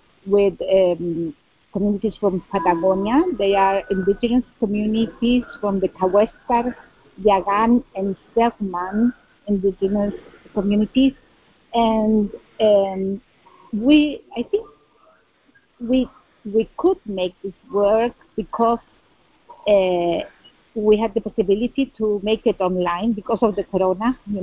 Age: 50-69